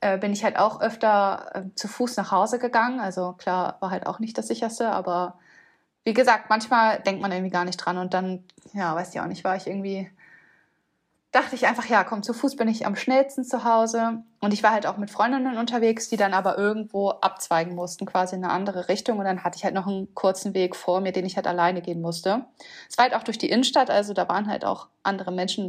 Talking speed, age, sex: 240 wpm, 20-39, female